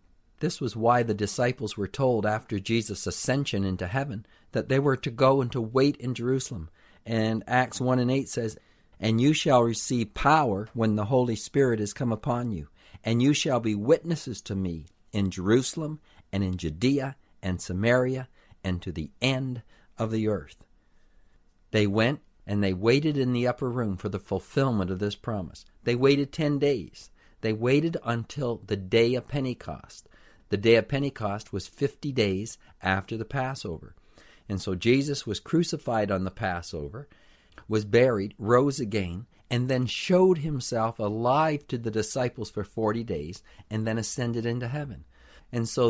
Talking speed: 165 wpm